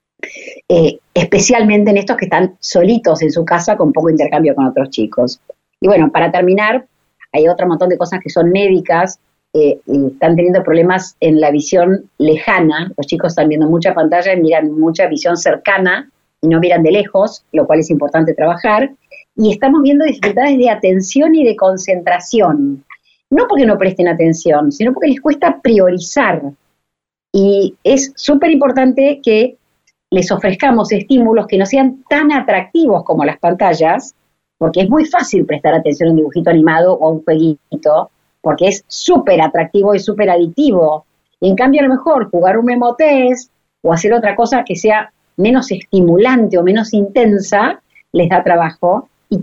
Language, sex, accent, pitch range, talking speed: Spanish, female, Argentinian, 165-250 Hz, 165 wpm